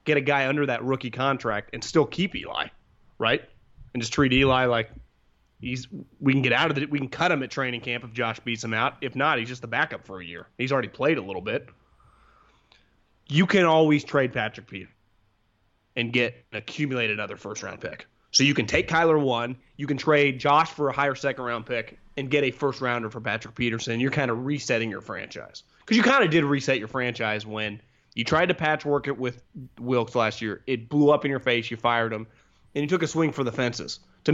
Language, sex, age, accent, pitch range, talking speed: English, male, 30-49, American, 120-150 Hz, 230 wpm